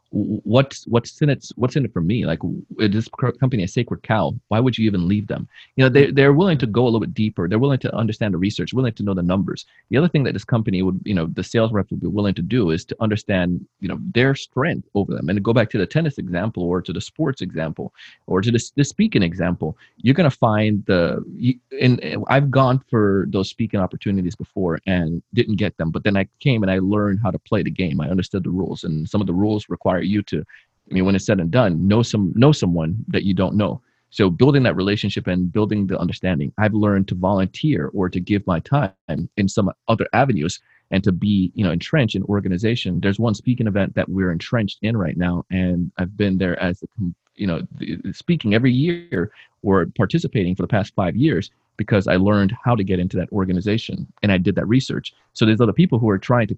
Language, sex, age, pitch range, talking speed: English, male, 30-49, 95-120 Hz, 240 wpm